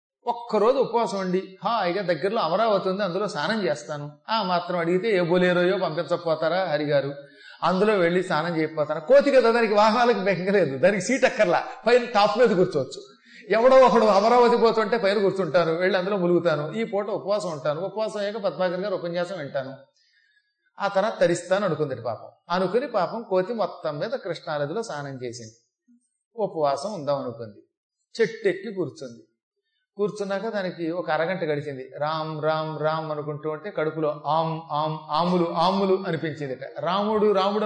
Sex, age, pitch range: male, 30-49, 155-215 Hz